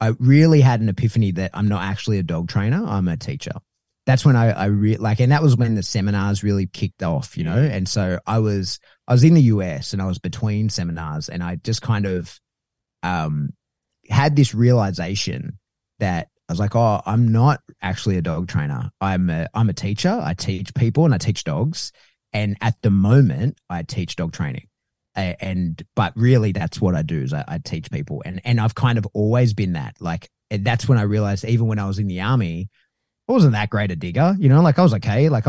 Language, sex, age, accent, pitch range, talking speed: English, male, 30-49, Australian, 95-125 Hz, 225 wpm